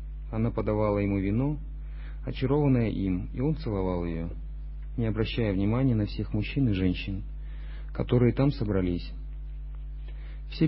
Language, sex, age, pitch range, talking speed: Russian, male, 40-59, 80-130 Hz, 125 wpm